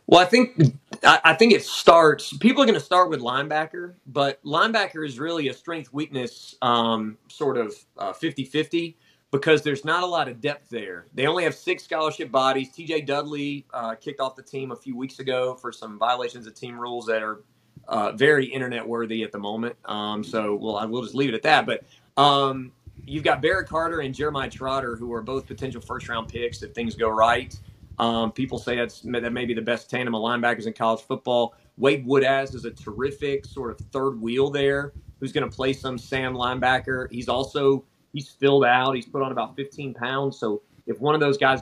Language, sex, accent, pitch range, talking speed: English, male, American, 120-145 Hz, 205 wpm